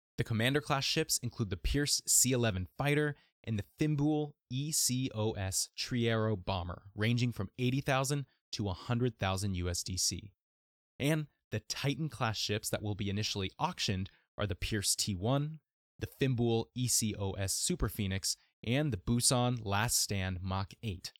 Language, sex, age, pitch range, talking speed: English, male, 20-39, 100-135 Hz, 140 wpm